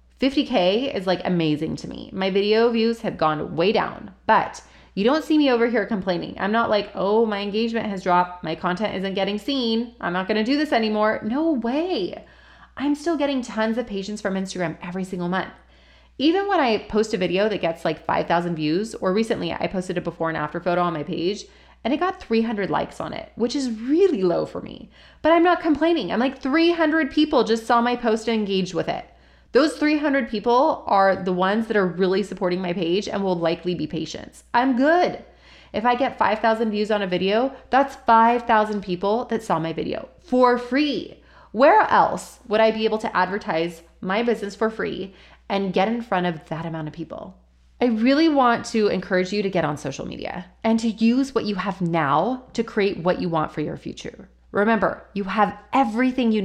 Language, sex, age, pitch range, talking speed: English, female, 20-39, 180-240 Hz, 205 wpm